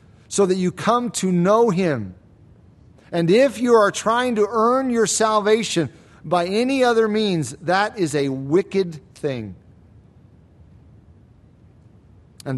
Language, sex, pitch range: English, male, 130-190 Hz